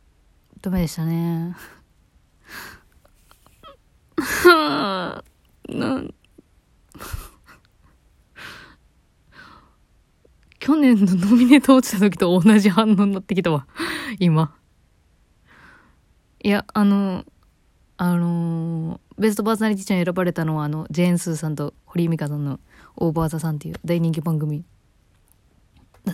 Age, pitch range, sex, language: 20-39, 155-205 Hz, female, Japanese